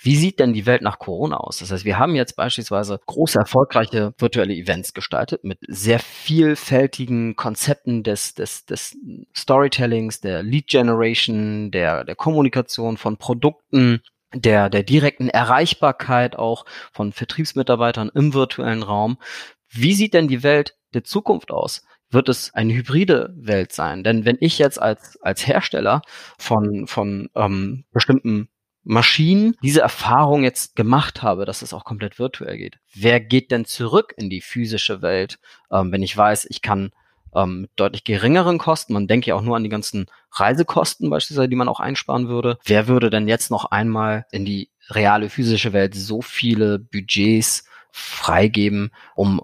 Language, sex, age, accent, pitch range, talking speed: German, male, 30-49, German, 105-130 Hz, 160 wpm